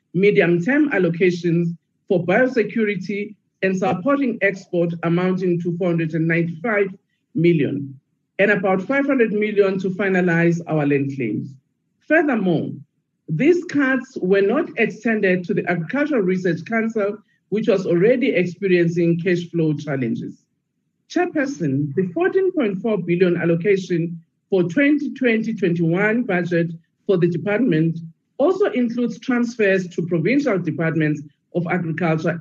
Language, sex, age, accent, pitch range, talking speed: English, male, 50-69, South African, 165-220 Hz, 105 wpm